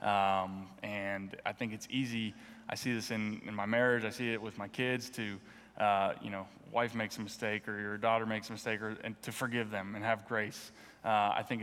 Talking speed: 220 wpm